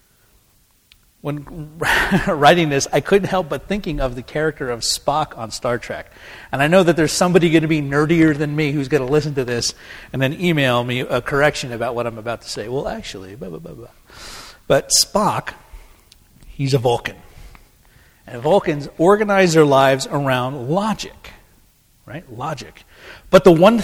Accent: American